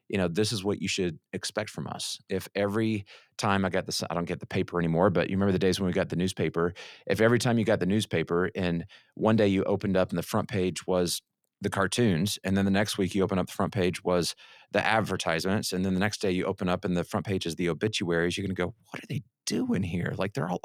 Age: 30-49